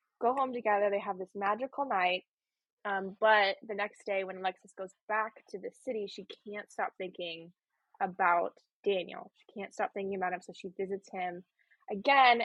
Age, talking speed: 10-29, 180 wpm